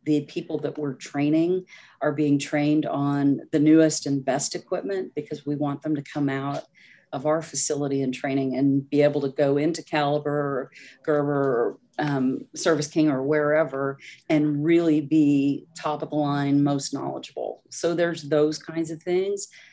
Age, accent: 40-59, American